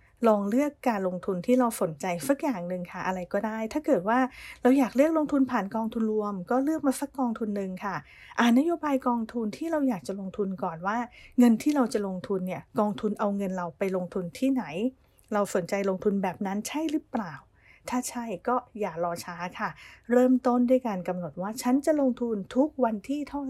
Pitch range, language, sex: 190-255 Hz, English, female